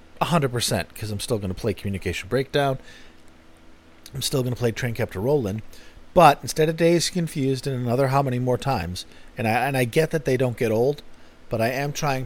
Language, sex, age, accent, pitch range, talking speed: English, male, 40-59, American, 85-130 Hz, 215 wpm